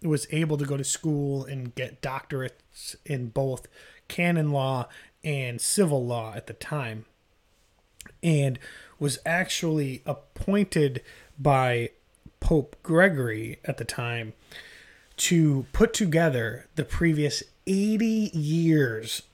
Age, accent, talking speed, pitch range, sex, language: 30-49, American, 110 wpm, 130-175 Hz, male, English